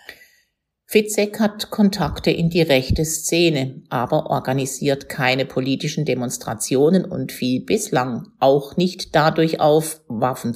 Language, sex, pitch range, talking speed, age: German, female, 130-175 Hz, 115 wpm, 50-69